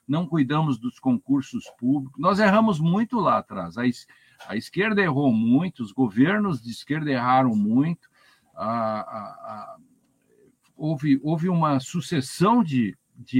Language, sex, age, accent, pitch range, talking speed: Portuguese, male, 60-79, Brazilian, 135-215 Hz, 140 wpm